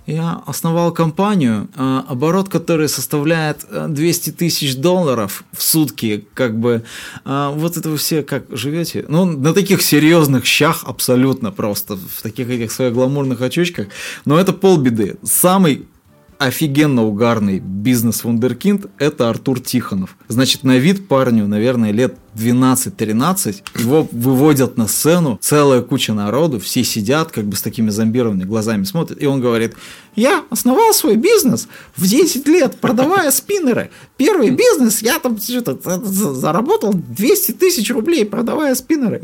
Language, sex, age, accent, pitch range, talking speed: Russian, male, 20-39, native, 120-195 Hz, 135 wpm